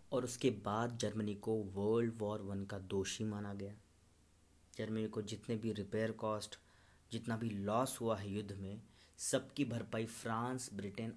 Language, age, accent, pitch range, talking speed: Hindi, 30-49, native, 95-120 Hz, 155 wpm